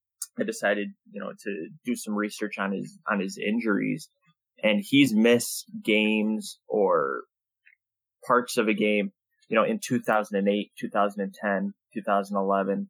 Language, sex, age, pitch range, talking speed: English, male, 20-39, 100-125 Hz, 125 wpm